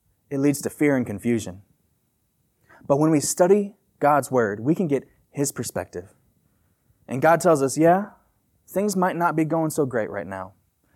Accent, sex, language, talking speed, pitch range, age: American, male, English, 170 wpm, 110-165 Hz, 20-39